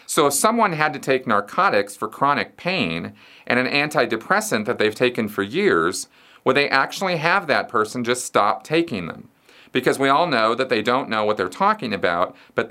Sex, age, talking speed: male, 40-59, 195 wpm